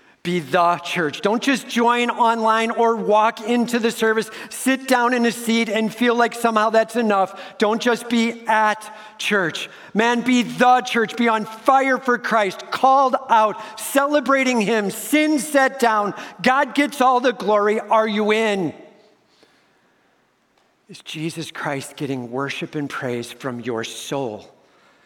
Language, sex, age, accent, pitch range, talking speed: English, male, 50-69, American, 140-230 Hz, 150 wpm